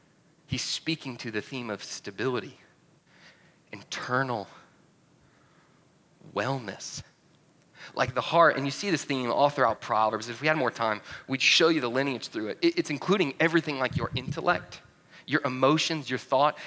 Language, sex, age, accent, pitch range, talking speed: English, male, 30-49, American, 120-165 Hz, 150 wpm